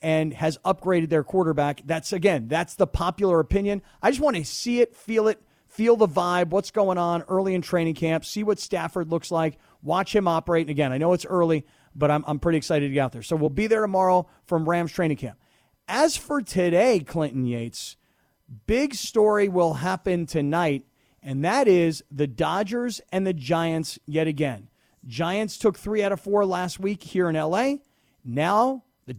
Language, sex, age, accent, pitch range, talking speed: English, male, 40-59, American, 160-200 Hz, 195 wpm